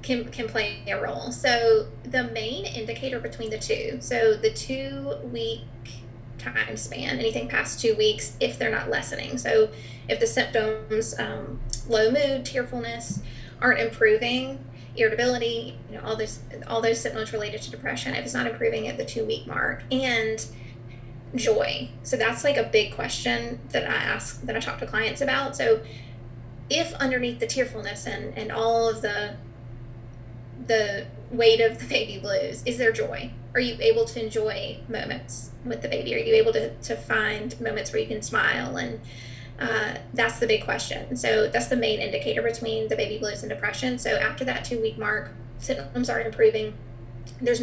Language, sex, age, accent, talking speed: English, female, 20-39, American, 175 wpm